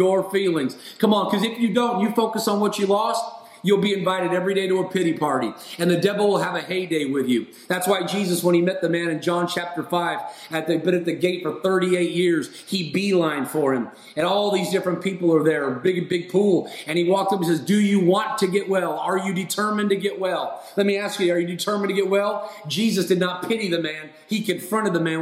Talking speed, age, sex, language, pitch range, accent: 245 wpm, 30-49, male, English, 175-210 Hz, American